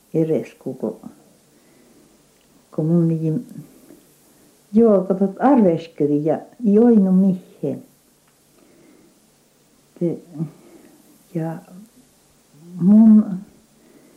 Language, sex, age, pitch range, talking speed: Finnish, female, 60-79, 155-210 Hz, 40 wpm